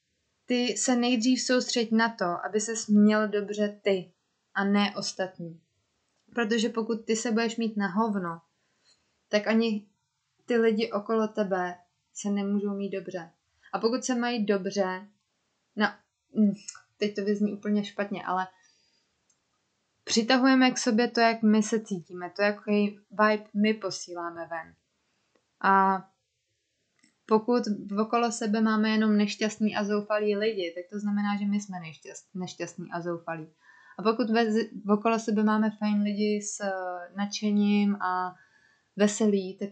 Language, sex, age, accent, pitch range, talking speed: Czech, female, 20-39, native, 185-225 Hz, 135 wpm